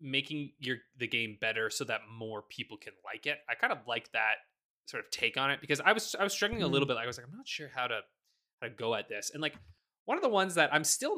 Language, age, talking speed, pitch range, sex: English, 20-39, 285 wpm, 125-160 Hz, male